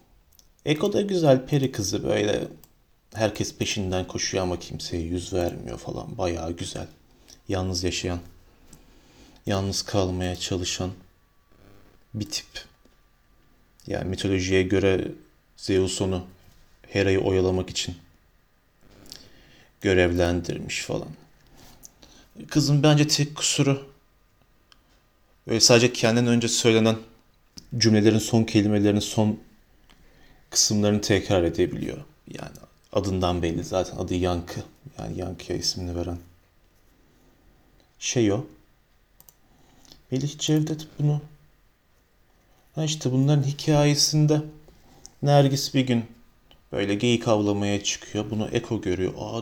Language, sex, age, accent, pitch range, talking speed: Turkish, male, 40-59, native, 90-120 Hz, 95 wpm